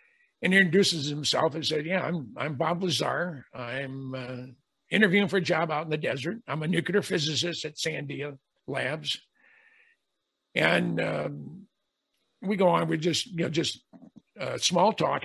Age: 50-69